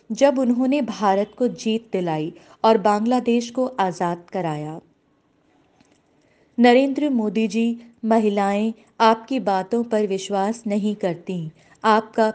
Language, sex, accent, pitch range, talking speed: Hindi, female, native, 190-245 Hz, 105 wpm